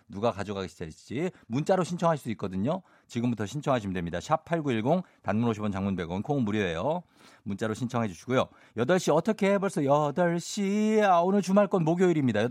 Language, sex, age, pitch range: Korean, male, 50-69, 110-165 Hz